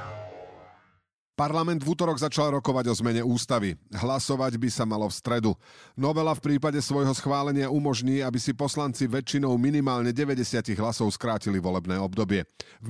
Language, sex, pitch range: Slovak, male, 105-145 Hz